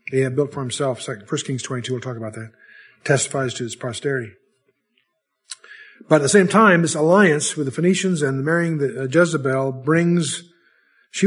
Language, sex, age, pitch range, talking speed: English, male, 50-69, 130-170 Hz, 170 wpm